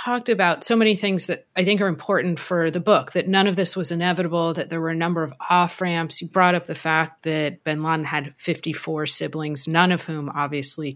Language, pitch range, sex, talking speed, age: English, 155-185 Hz, female, 225 wpm, 30-49